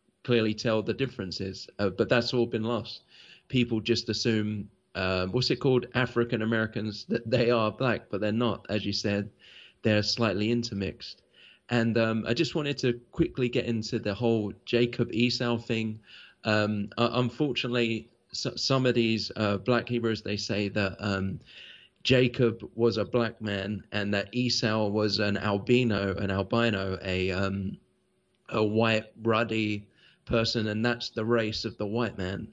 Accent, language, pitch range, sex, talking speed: British, English, 105-120 Hz, male, 155 wpm